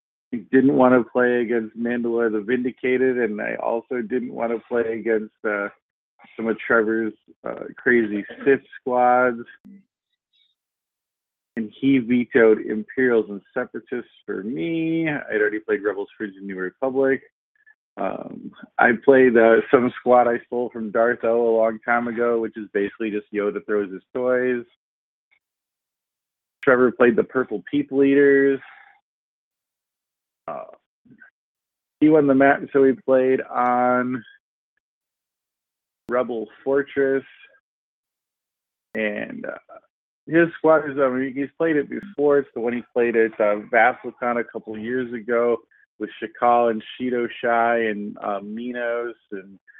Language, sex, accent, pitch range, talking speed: English, male, American, 110-130 Hz, 140 wpm